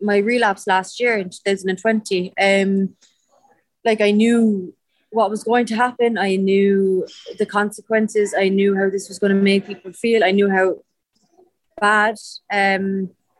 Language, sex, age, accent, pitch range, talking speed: English, female, 20-39, Irish, 190-220 Hz, 150 wpm